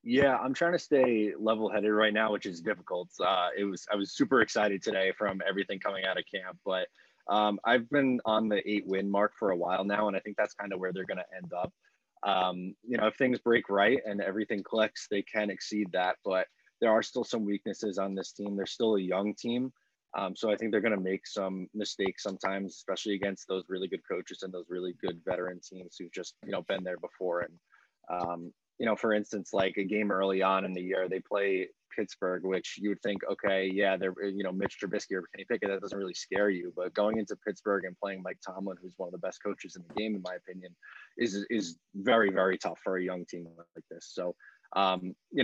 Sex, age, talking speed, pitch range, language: male, 20-39, 235 wpm, 95-105 Hz, English